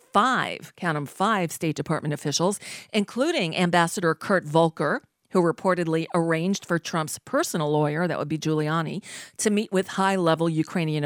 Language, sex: English, female